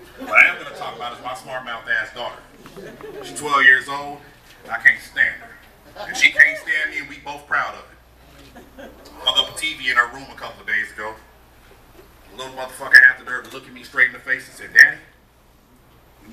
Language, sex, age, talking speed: English, male, 30-49, 230 wpm